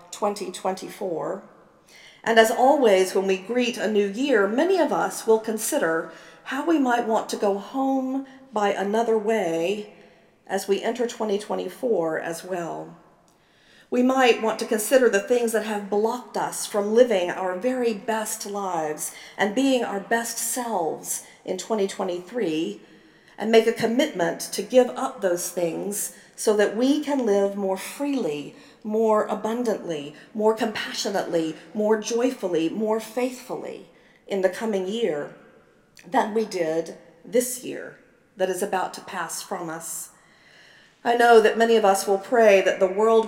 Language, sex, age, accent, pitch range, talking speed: English, female, 50-69, American, 190-230 Hz, 145 wpm